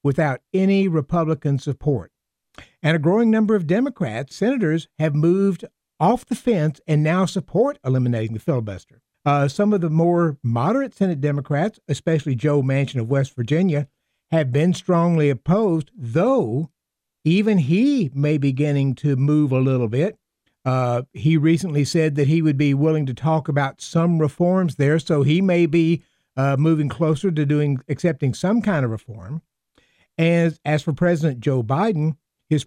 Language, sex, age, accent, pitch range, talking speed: English, male, 60-79, American, 140-175 Hz, 160 wpm